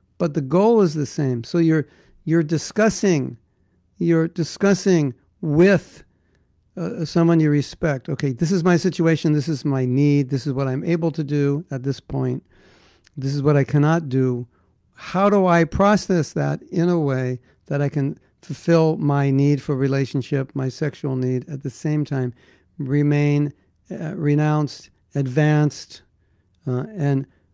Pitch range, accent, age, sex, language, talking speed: 135-170 Hz, American, 60-79, male, English, 155 wpm